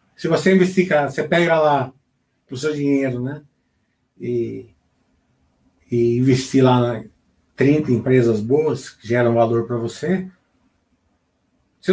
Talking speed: 120 wpm